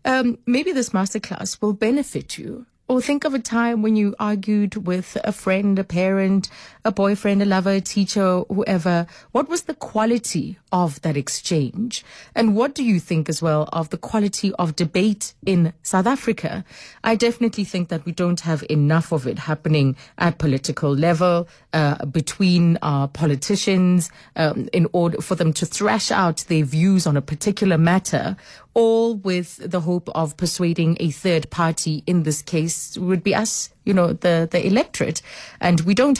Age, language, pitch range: 30-49, English, 160-200 Hz